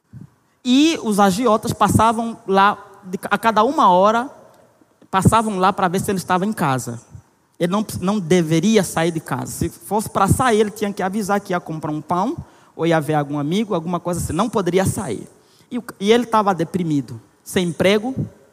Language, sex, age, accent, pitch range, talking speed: Portuguese, male, 20-39, Brazilian, 165-220 Hz, 180 wpm